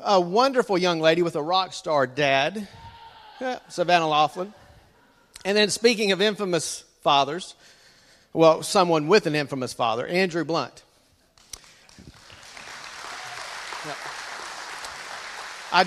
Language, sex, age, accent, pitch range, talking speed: English, male, 50-69, American, 155-210 Hz, 100 wpm